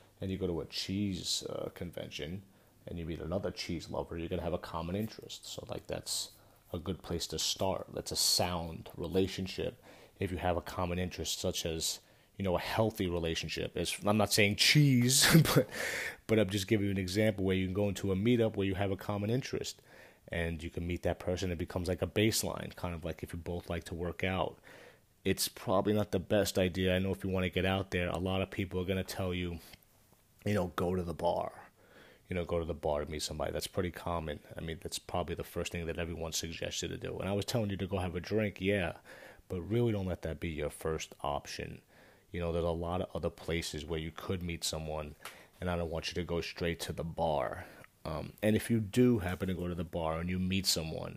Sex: male